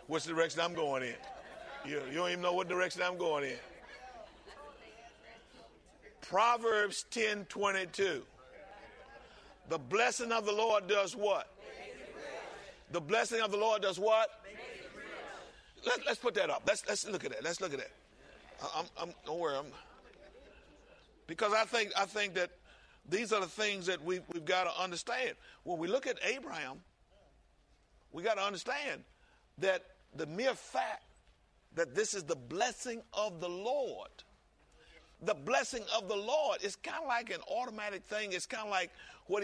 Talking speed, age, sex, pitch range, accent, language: 160 wpm, 60-79, male, 180-230 Hz, American, English